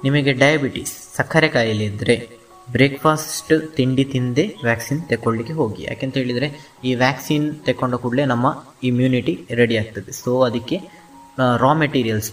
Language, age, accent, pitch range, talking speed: Kannada, 20-39, native, 115-130 Hz, 115 wpm